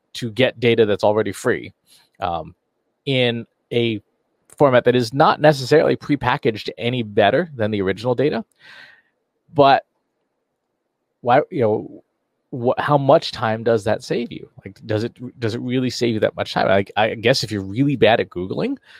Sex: male